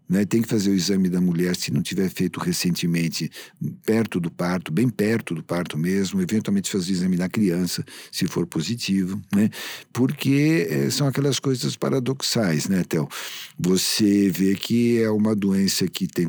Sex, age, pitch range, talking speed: male, 50-69, 90-120 Hz, 175 wpm